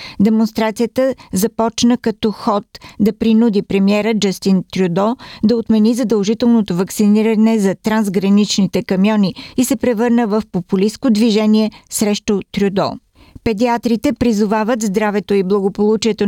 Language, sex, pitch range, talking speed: Bulgarian, female, 195-230 Hz, 105 wpm